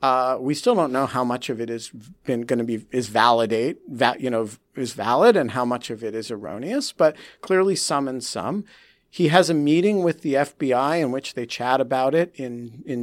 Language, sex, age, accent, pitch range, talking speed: English, male, 50-69, American, 130-165 Hz, 225 wpm